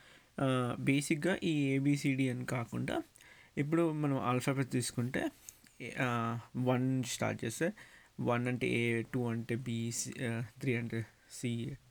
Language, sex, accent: Telugu, male, native